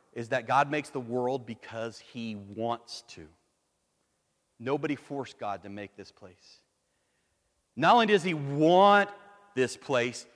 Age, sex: 40-59, male